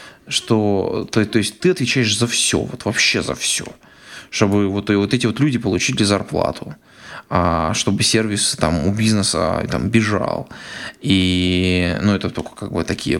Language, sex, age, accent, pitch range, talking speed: Russian, male, 20-39, native, 95-110 Hz, 155 wpm